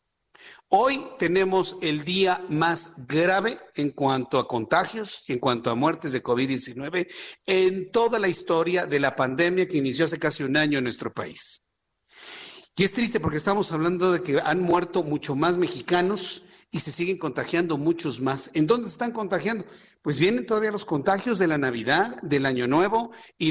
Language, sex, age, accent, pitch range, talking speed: Spanish, male, 50-69, Mexican, 145-195 Hz, 170 wpm